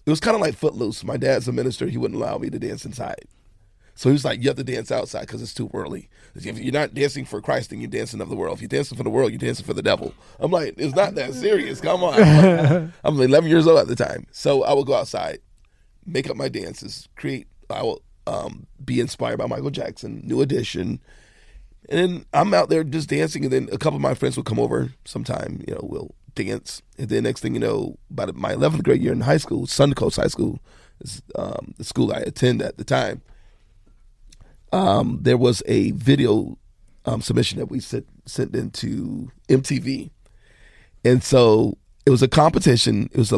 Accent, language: American, English